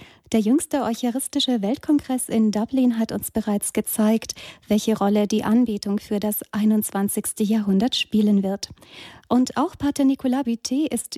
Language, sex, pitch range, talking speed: German, female, 210-245 Hz, 140 wpm